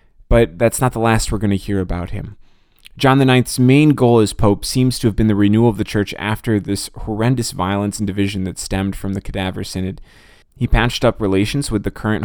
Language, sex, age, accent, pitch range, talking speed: English, male, 20-39, American, 100-120 Hz, 220 wpm